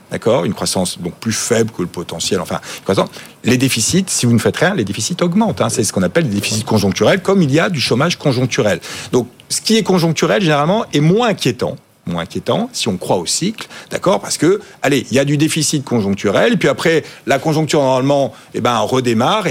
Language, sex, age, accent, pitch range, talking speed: French, male, 50-69, French, 120-175 Hz, 210 wpm